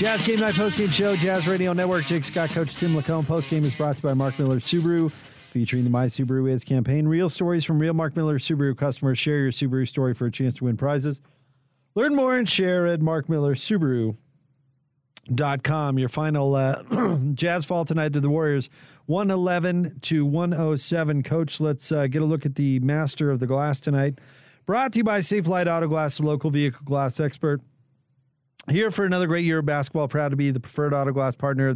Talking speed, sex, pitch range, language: 200 wpm, male, 130-160 Hz, English